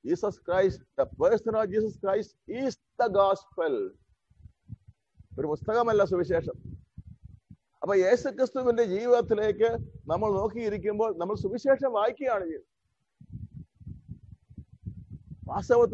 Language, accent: English, Indian